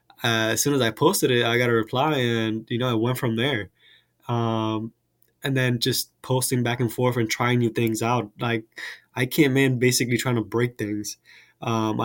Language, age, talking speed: English, 20-39, 205 wpm